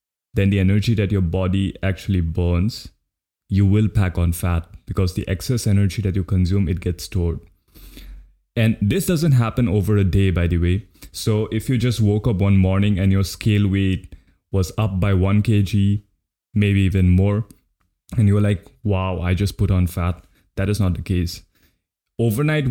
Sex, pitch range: male, 90-110 Hz